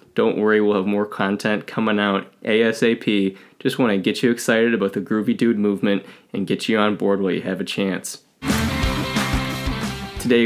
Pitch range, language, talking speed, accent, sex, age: 100-115 Hz, English, 180 wpm, American, male, 20-39